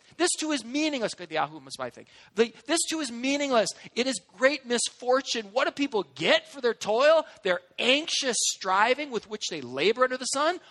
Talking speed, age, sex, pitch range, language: 160 wpm, 40-59, male, 225-305 Hz, English